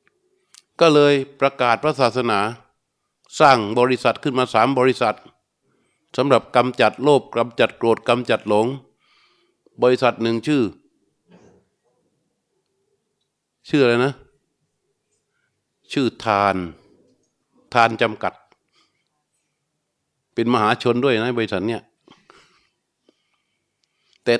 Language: Thai